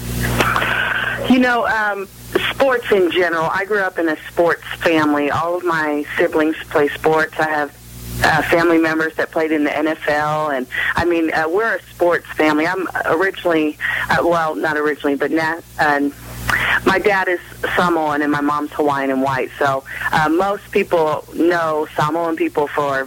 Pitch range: 145-165 Hz